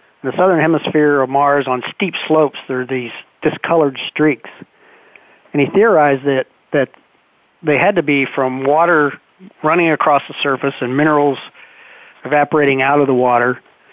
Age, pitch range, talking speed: 50-69, 135-155 Hz, 155 wpm